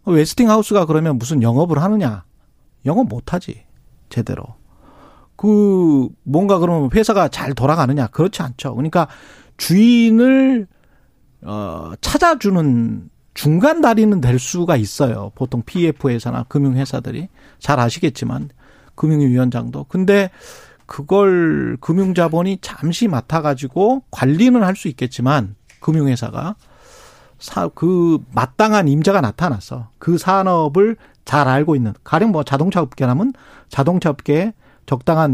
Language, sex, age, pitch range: Korean, male, 40-59, 130-190 Hz